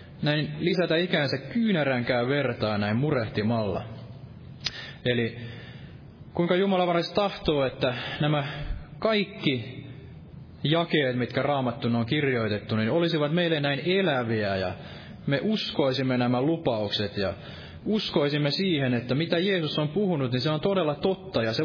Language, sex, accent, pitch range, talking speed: Finnish, male, native, 120-170 Hz, 125 wpm